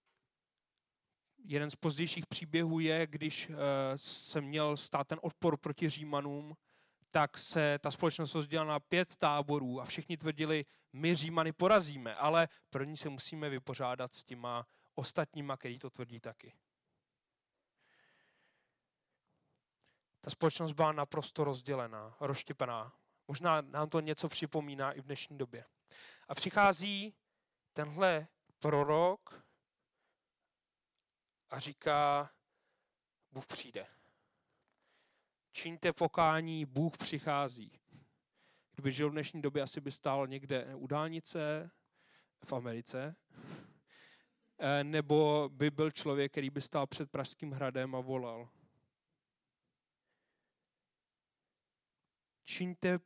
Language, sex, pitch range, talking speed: Czech, male, 135-160 Hz, 105 wpm